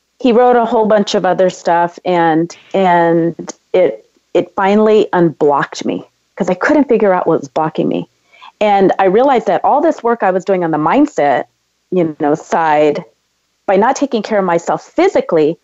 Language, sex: English, female